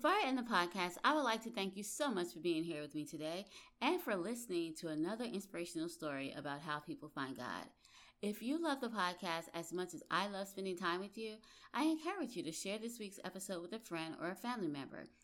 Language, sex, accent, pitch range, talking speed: English, female, American, 165-235 Hz, 235 wpm